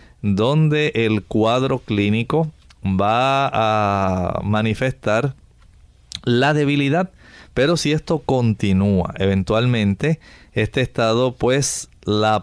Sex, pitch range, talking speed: male, 100-130 Hz, 85 wpm